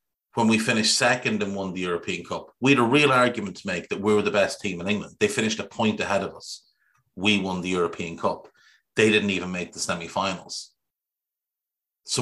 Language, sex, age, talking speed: English, male, 30-49, 215 wpm